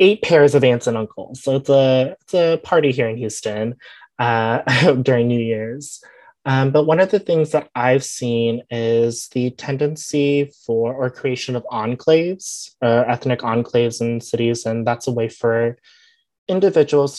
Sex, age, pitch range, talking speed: male, 20-39, 115-145 Hz, 160 wpm